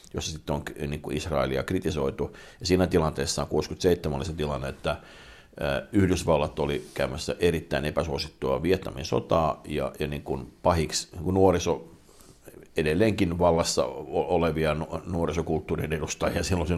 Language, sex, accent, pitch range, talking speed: Finnish, male, native, 75-95 Hz, 120 wpm